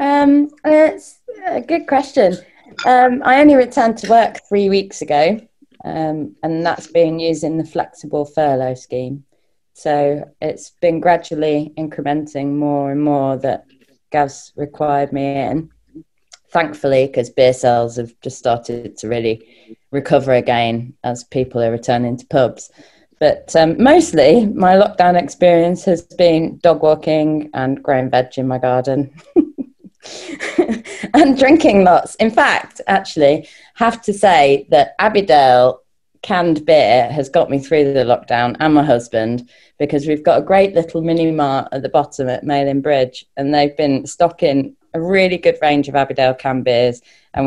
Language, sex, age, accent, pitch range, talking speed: English, female, 20-39, British, 135-180 Hz, 150 wpm